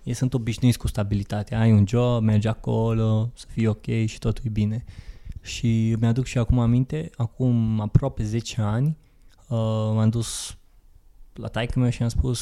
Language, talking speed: Romanian, 165 wpm